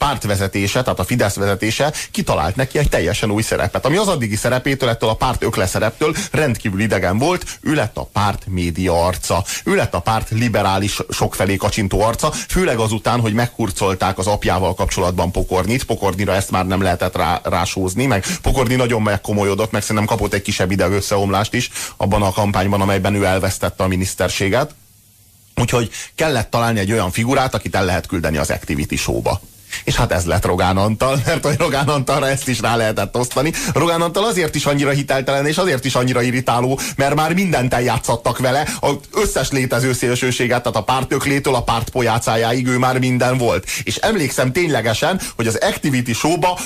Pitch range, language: 100-135 Hz, Hungarian